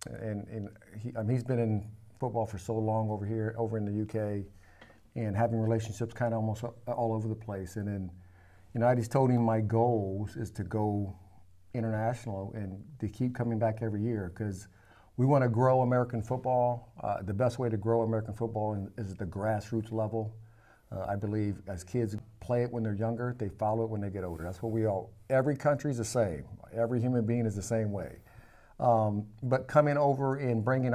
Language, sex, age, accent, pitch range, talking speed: English, male, 50-69, American, 105-120 Hz, 205 wpm